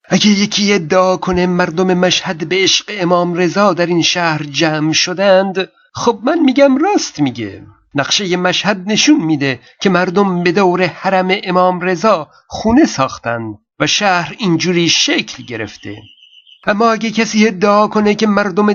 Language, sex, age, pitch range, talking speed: Persian, male, 50-69, 170-210 Hz, 145 wpm